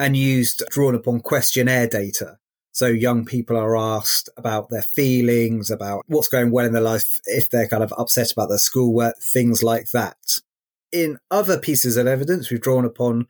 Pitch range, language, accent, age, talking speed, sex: 115-140 Hz, English, British, 30-49, 180 wpm, male